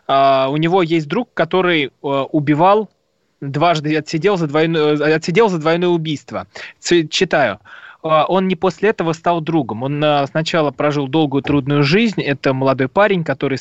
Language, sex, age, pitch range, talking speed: Russian, male, 20-39, 130-160 Hz, 150 wpm